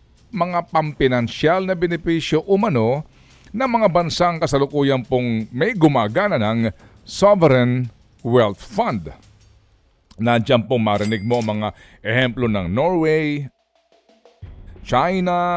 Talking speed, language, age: 95 wpm, Filipino, 50-69